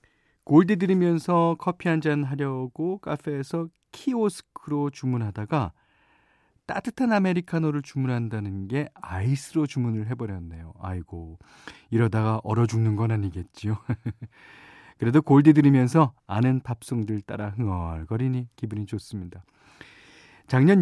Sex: male